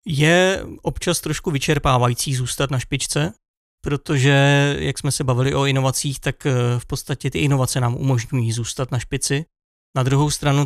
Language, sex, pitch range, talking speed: Czech, male, 130-145 Hz, 150 wpm